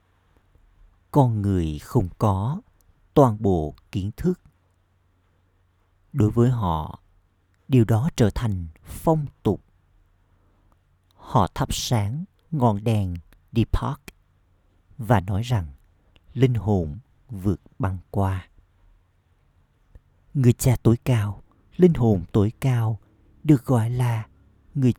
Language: Vietnamese